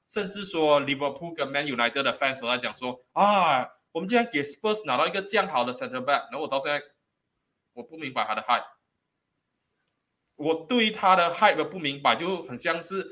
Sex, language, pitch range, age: male, Chinese, 135-195 Hz, 20-39